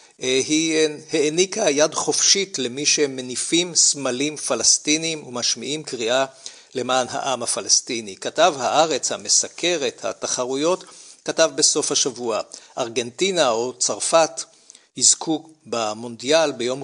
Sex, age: male, 50-69